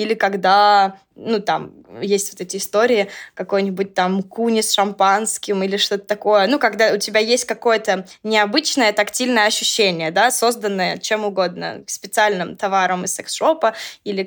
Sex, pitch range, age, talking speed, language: female, 200-235 Hz, 20-39, 145 wpm, Russian